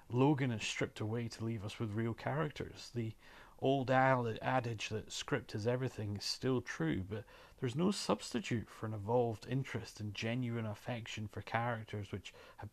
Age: 30-49